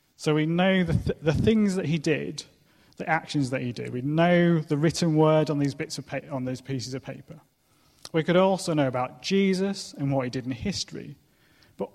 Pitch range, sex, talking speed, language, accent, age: 130-160 Hz, male, 215 wpm, English, British, 30-49